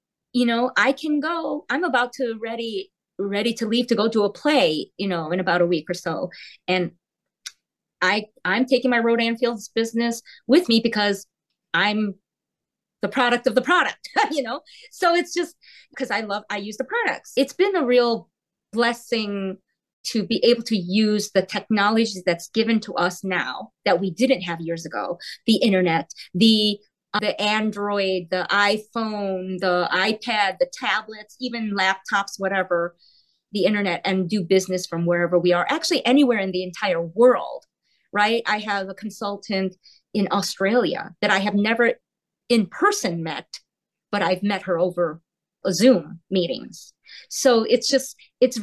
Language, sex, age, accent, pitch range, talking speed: English, female, 30-49, American, 185-245 Hz, 165 wpm